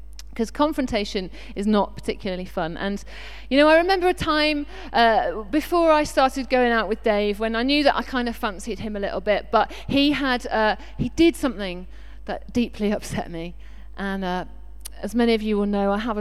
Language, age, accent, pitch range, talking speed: English, 40-59, British, 190-255 Hz, 195 wpm